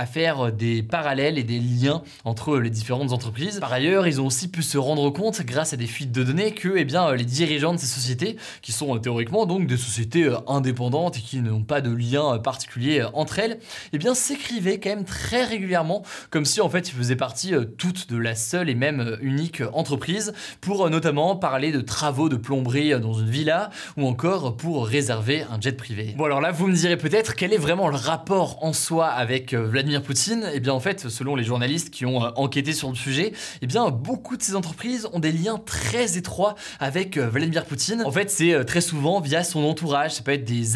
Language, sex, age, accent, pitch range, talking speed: French, male, 20-39, French, 130-170 Hz, 220 wpm